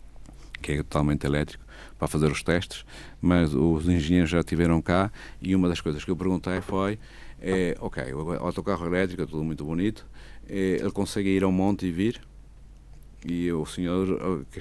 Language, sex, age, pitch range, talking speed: Portuguese, male, 50-69, 80-105 Hz, 170 wpm